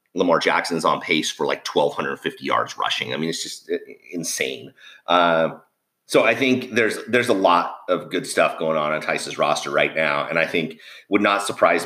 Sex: male